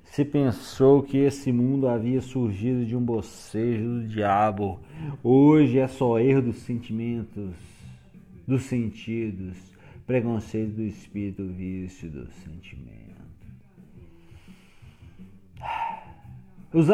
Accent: Brazilian